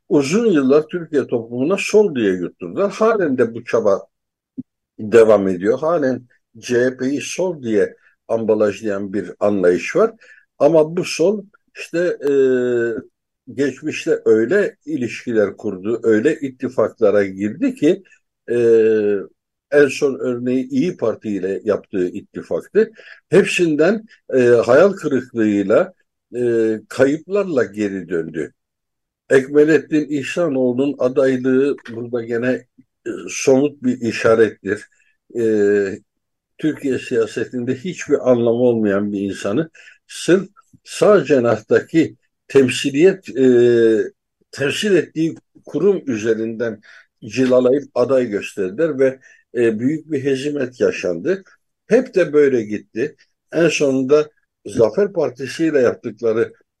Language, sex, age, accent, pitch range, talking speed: Turkish, male, 60-79, native, 115-175 Hz, 100 wpm